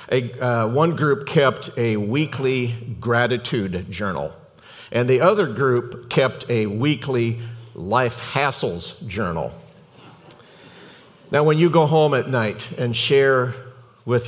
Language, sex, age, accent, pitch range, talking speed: English, male, 50-69, American, 110-140 Hz, 120 wpm